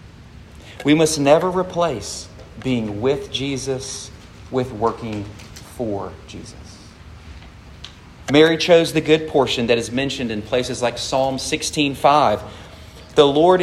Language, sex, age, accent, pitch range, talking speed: English, male, 40-59, American, 100-155 Hz, 115 wpm